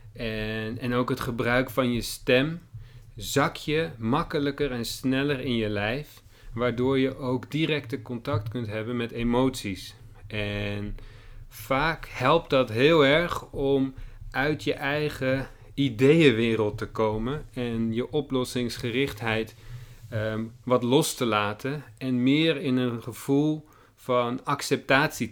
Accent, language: Dutch, Dutch